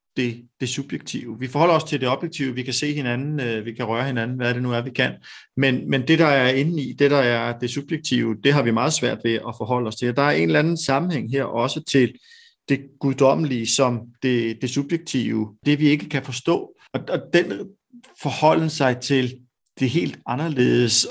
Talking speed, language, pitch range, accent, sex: 215 wpm, Danish, 120-150 Hz, native, male